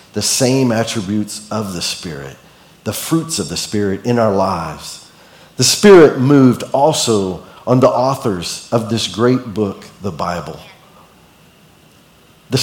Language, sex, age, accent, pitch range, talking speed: English, male, 40-59, American, 100-135 Hz, 135 wpm